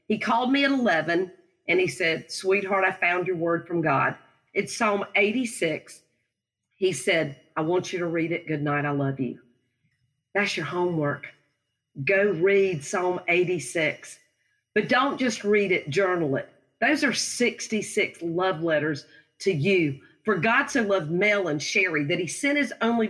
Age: 40-59